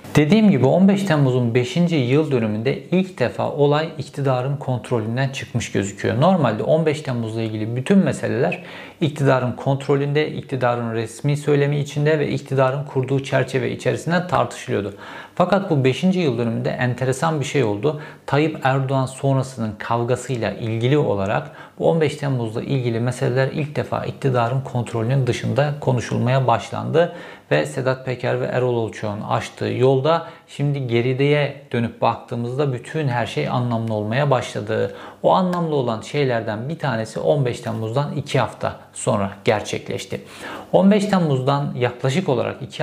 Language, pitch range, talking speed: Turkish, 120-145 Hz, 130 wpm